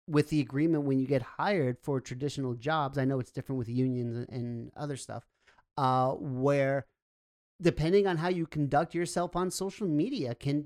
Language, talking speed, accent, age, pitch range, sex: English, 175 wpm, American, 40-59, 130-155 Hz, male